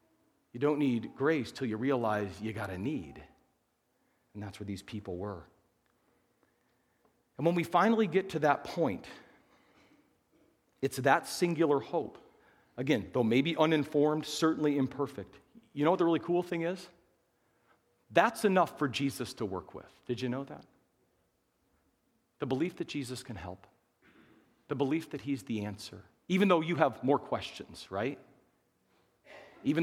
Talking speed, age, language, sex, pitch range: 150 wpm, 40-59, English, male, 115-175 Hz